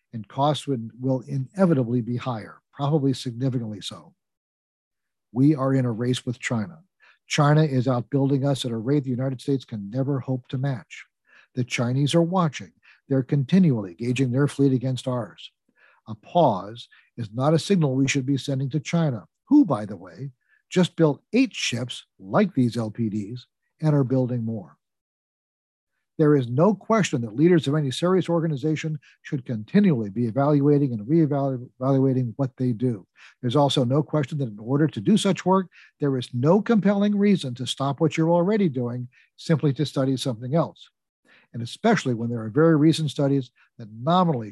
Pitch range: 125-155 Hz